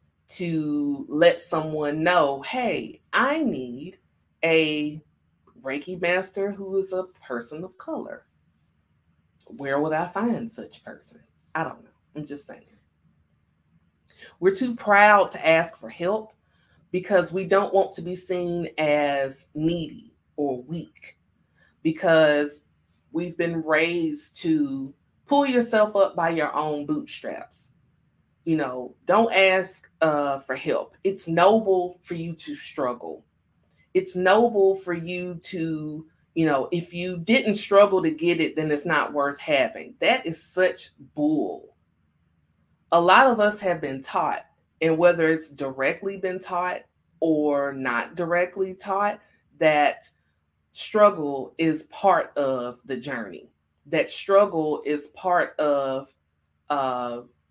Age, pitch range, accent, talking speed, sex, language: 30-49, 145-190 Hz, American, 130 wpm, female, English